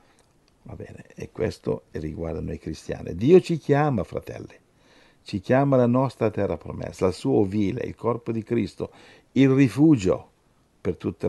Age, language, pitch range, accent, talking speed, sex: 50-69, Italian, 100-120 Hz, native, 150 wpm, male